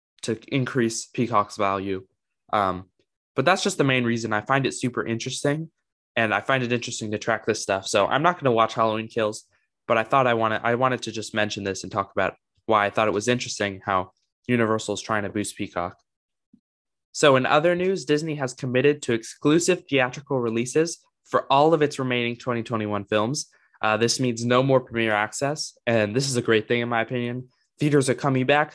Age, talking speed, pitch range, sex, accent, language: 20-39, 205 wpm, 105-135 Hz, male, American, English